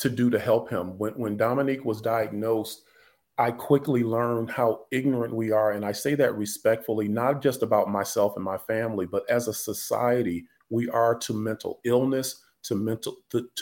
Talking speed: 180 wpm